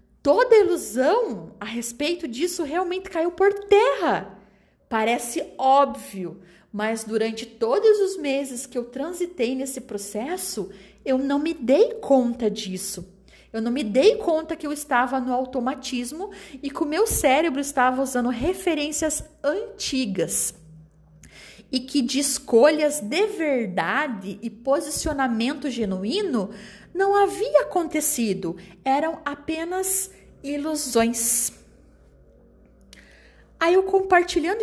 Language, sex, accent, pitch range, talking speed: Portuguese, female, Brazilian, 225-330 Hz, 110 wpm